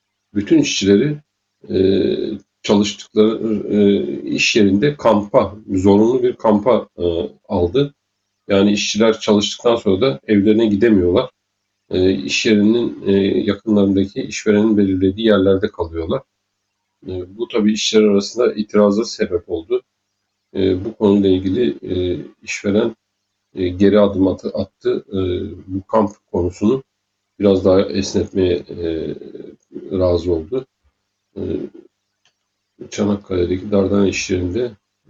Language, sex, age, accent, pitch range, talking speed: Turkish, male, 50-69, native, 95-110 Hz, 90 wpm